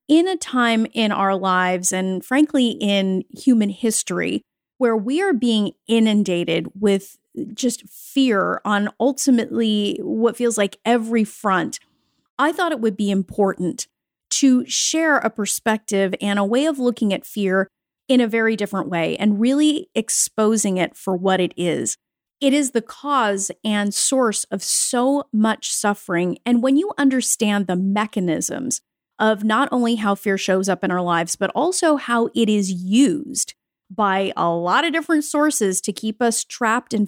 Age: 40-59